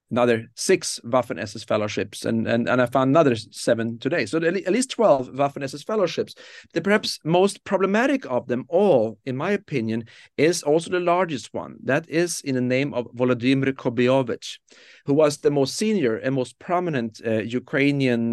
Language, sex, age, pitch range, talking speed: English, male, 40-59, 115-150 Hz, 165 wpm